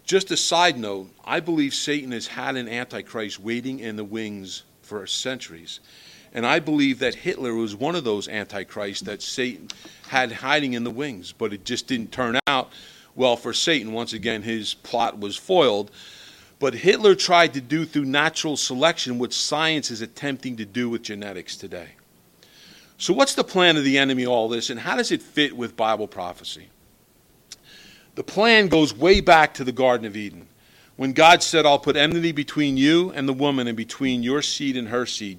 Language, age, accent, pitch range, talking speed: English, 50-69, American, 115-160 Hz, 190 wpm